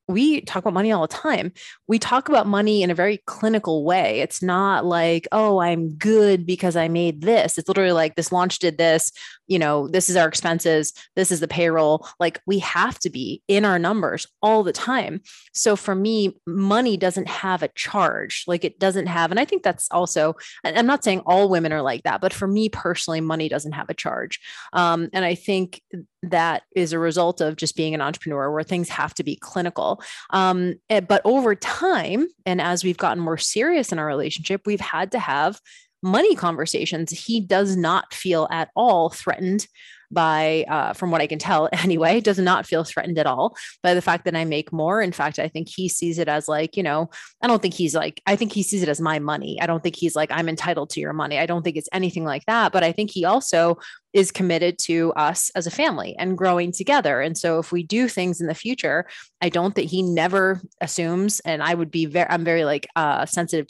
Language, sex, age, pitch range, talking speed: English, female, 20-39, 165-195 Hz, 220 wpm